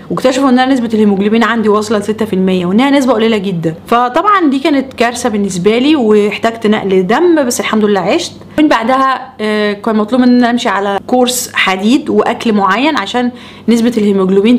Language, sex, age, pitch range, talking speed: Arabic, female, 20-39, 210-255 Hz, 165 wpm